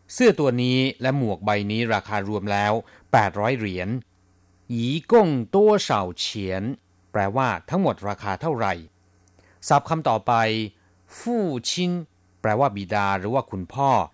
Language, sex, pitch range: Thai, male, 95-135 Hz